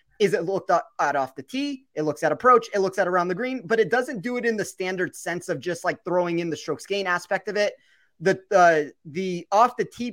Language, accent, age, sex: English, American, 30-49, male